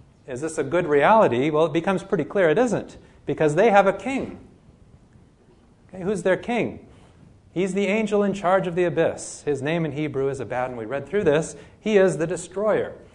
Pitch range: 125-175 Hz